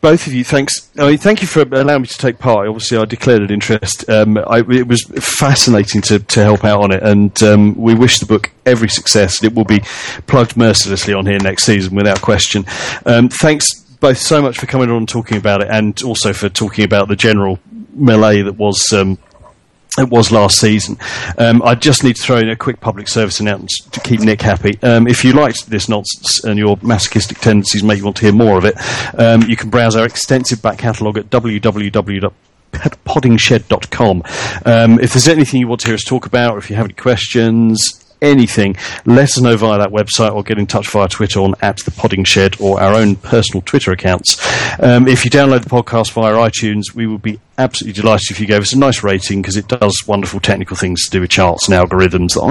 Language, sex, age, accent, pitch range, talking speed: English, male, 40-59, British, 105-120 Hz, 215 wpm